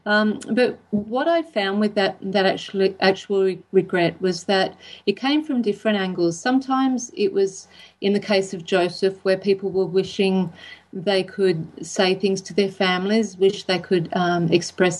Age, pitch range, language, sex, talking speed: 40-59, 180-195 Hz, English, female, 170 wpm